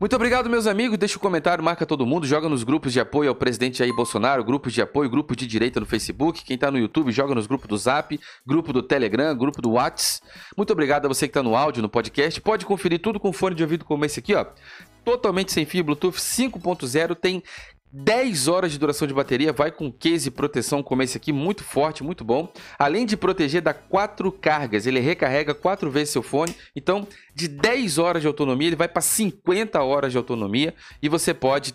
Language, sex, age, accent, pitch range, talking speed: Portuguese, male, 40-59, Brazilian, 135-180 Hz, 215 wpm